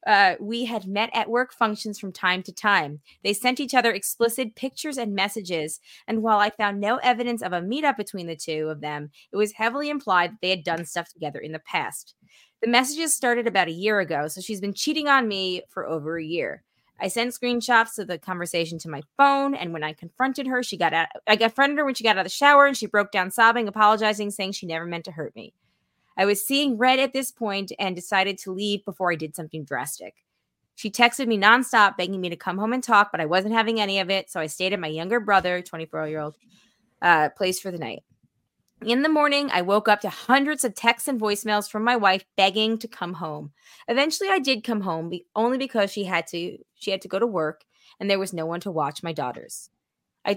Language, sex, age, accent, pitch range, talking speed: English, female, 20-39, American, 175-235 Hz, 230 wpm